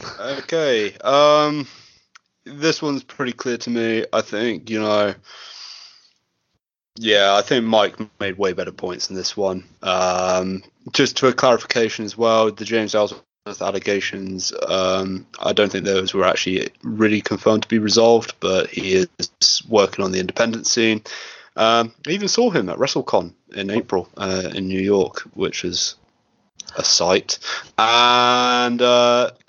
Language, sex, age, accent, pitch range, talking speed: English, male, 20-39, British, 95-115 Hz, 150 wpm